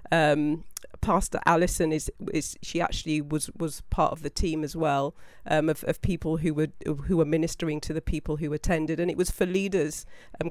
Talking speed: 200 wpm